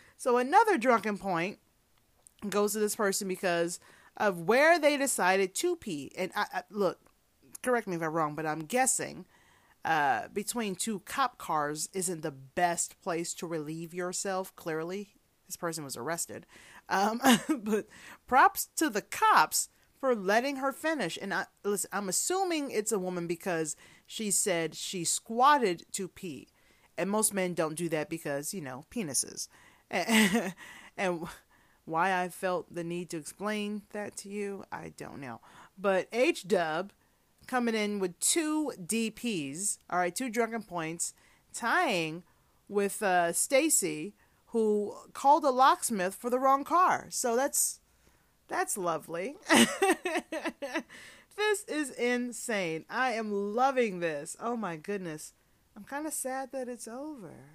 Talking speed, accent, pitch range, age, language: 140 wpm, American, 175-255 Hz, 30-49, English